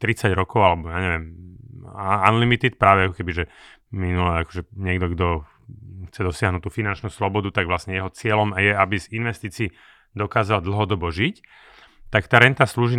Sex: male